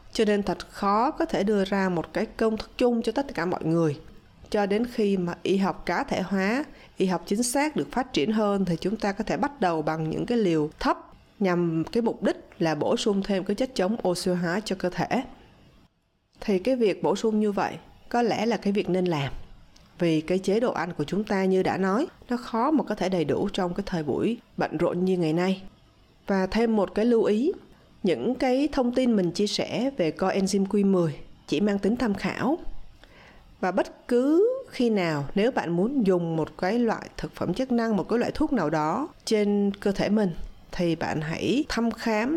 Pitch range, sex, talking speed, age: 180-235 Hz, female, 220 wpm, 20-39